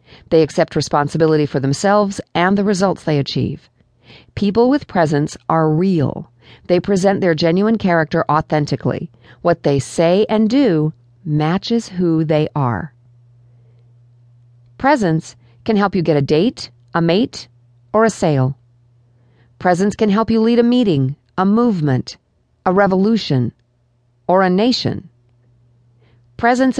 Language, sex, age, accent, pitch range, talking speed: English, female, 50-69, American, 125-185 Hz, 130 wpm